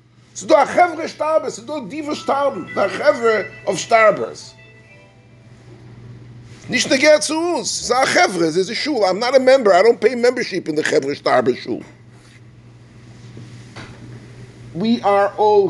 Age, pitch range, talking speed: 50-69, 155-265 Hz, 135 wpm